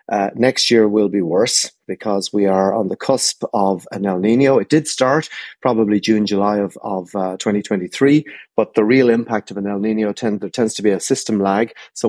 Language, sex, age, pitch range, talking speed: English, male, 30-49, 100-115 Hz, 210 wpm